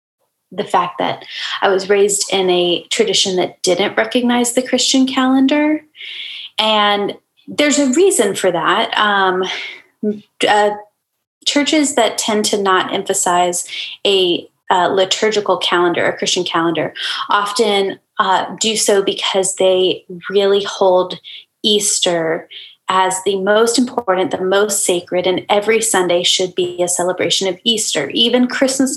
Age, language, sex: 20-39, English, female